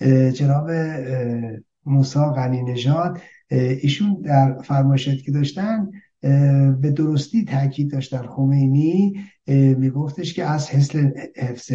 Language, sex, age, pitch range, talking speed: Persian, male, 60-79, 135-190 Hz, 95 wpm